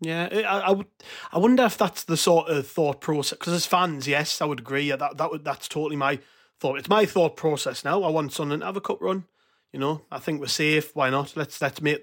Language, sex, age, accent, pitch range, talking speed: English, male, 30-49, British, 140-165 Hz, 245 wpm